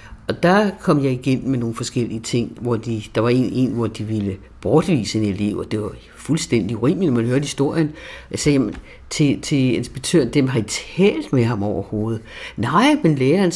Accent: native